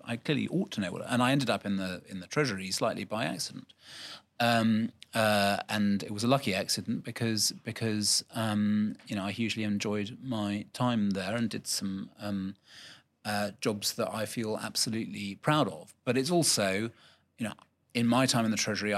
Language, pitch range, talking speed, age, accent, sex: English, 100-120 Hz, 185 wpm, 30-49, British, male